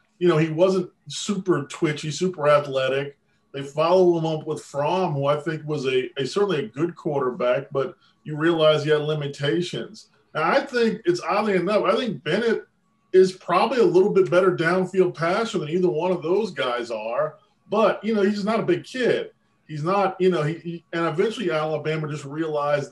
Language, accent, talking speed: English, American, 190 wpm